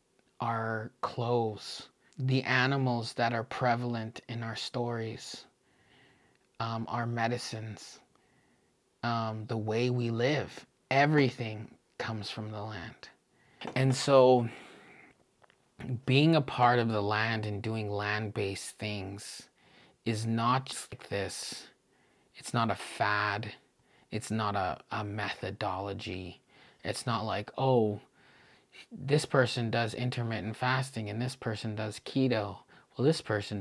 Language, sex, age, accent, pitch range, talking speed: English, male, 30-49, American, 105-125 Hz, 120 wpm